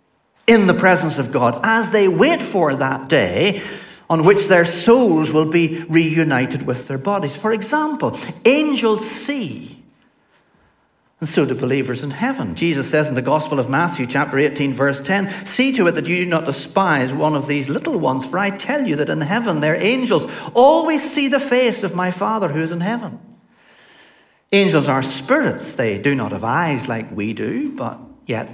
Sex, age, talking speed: male, 60-79, 185 wpm